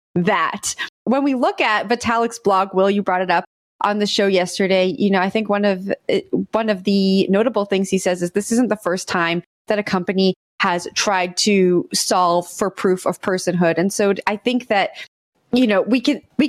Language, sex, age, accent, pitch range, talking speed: English, female, 20-39, American, 195-240 Hz, 195 wpm